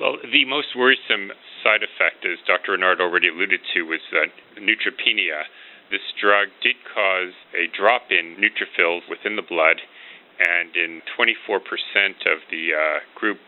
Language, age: English, 40-59